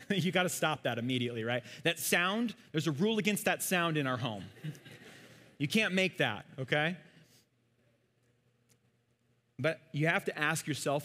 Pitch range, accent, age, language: 120-160 Hz, American, 30-49, English